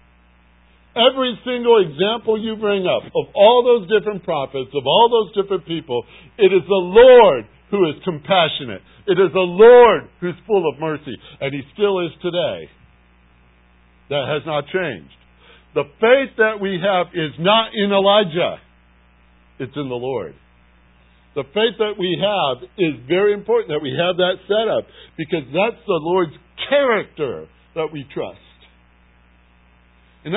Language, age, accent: English, 60-79, American